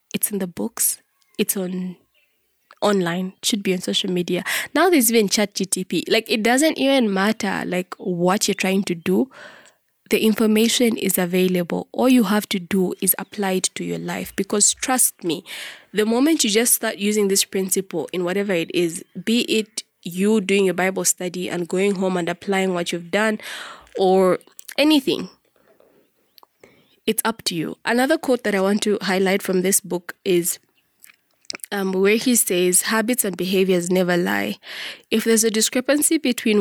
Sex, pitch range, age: female, 185-220 Hz, 20-39